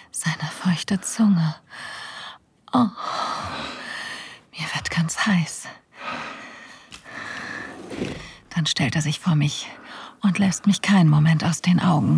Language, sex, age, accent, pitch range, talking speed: German, female, 40-59, German, 155-195 Hz, 110 wpm